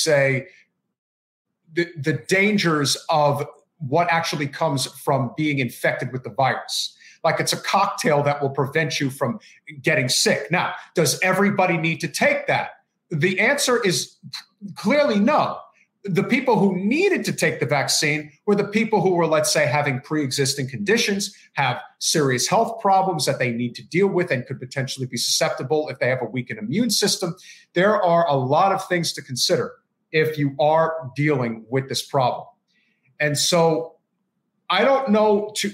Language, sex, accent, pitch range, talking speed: English, male, American, 150-200 Hz, 165 wpm